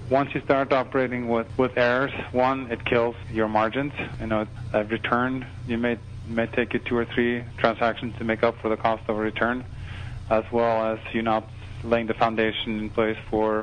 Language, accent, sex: English, American, male